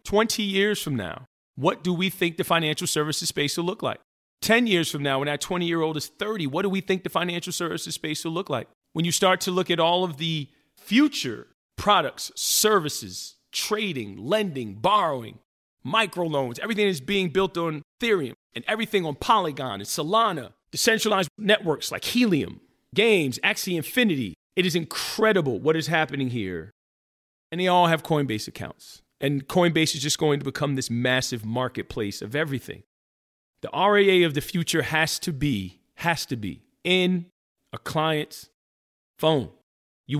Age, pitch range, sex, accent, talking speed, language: 40-59, 135-180 Hz, male, American, 165 wpm, English